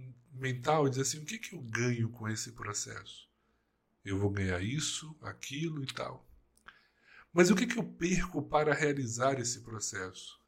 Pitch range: 125-170 Hz